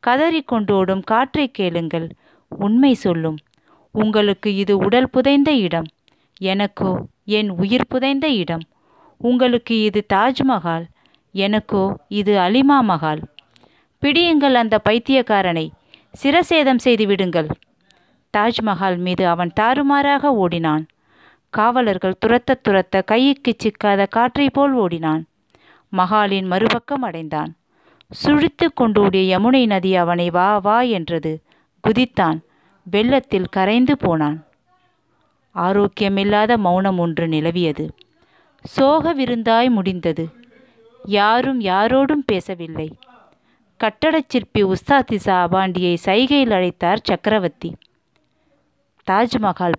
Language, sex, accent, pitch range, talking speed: Tamil, female, native, 180-245 Hz, 85 wpm